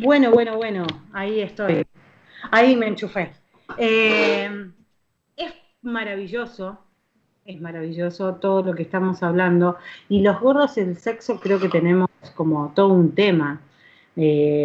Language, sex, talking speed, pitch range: Spanish, female, 130 wpm, 180-215 Hz